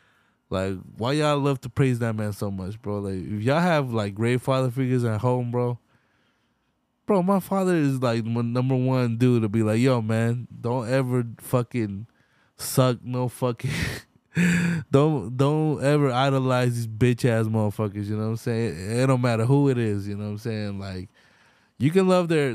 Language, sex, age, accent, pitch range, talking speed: English, male, 20-39, American, 110-135 Hz, 185 wpm